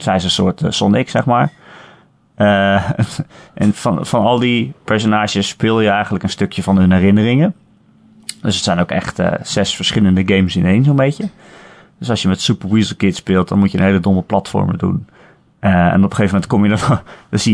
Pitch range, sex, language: 95-120 Hz, male, Dutch